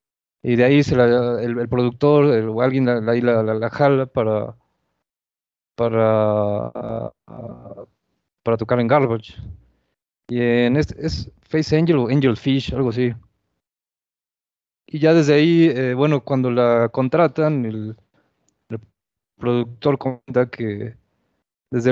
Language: Spanish